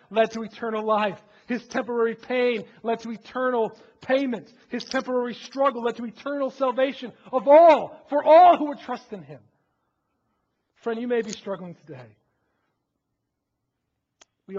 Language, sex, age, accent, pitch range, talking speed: English, male, 40-59, American, 155-205 Hz, 140 wpm